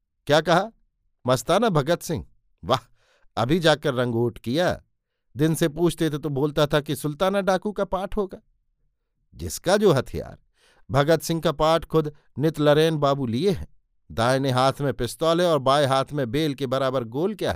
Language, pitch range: Hindi, 125-165 Hz